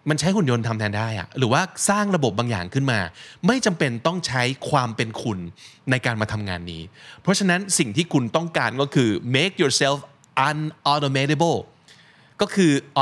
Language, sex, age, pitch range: Thai, male, 20-39, 105-150 Hz